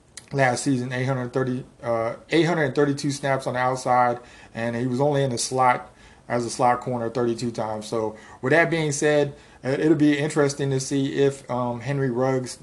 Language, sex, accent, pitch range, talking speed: English, male, American, 120-135 Hz, 170 wpm